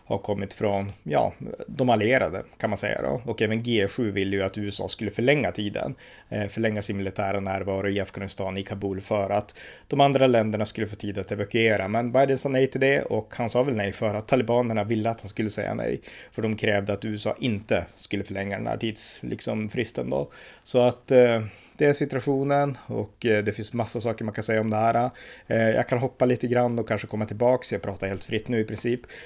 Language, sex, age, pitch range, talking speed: Swedish, male, 30-49, 105-125 Hz, 215 wpm